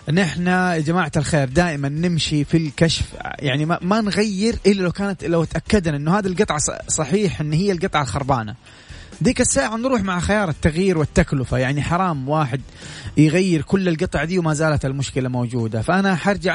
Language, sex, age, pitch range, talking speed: Arabic, male, 30-49, 145-195 Hz, 165 wpm